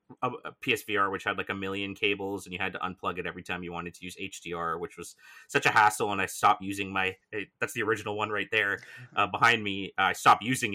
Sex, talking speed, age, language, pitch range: male, 240 wpm, 30-49, English, 90-105 Hz